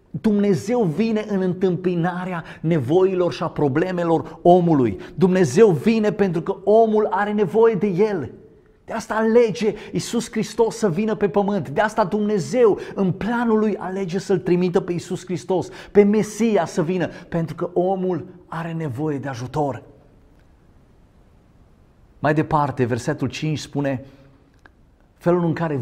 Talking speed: 135 wpm